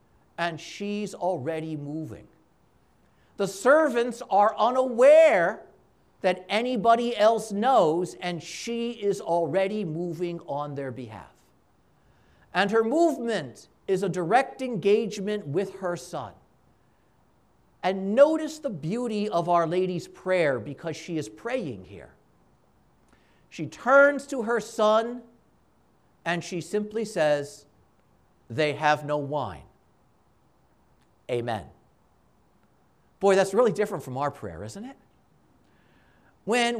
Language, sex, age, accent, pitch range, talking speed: English, male, 50-69, American, 180-245 Hz, 110 wpm